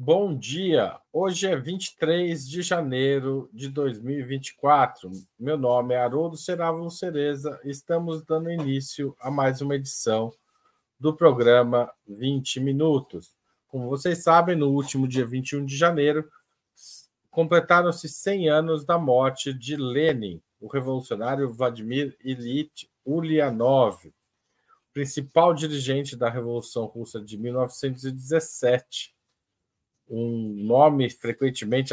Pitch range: 130-165 Hz